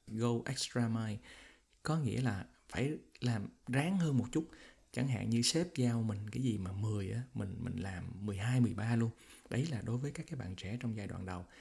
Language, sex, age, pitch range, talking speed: Vietnamese, male, 20-39, 105-130 Hz, 205 wpm